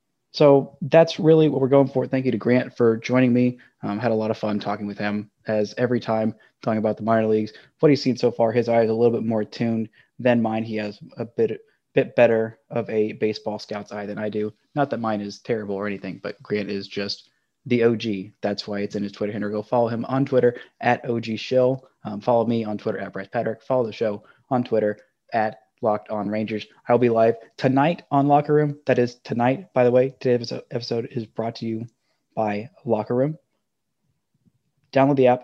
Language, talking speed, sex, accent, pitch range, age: English, 220 wpm, male, American, 110-130 Hz, 20-39